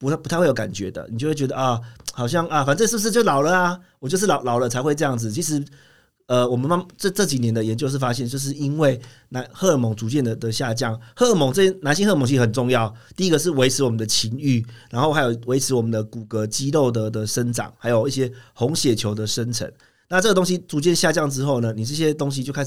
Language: Chinese